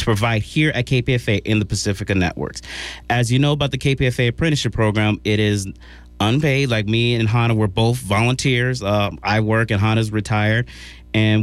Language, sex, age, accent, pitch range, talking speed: English, male, 30-49, American, 105-135 Hz, 175 wpm